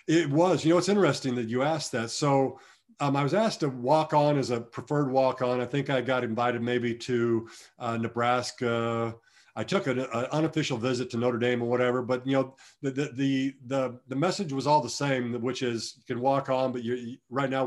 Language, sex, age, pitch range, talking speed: English, male, 50-69, 120-145 Hz, 220 wpm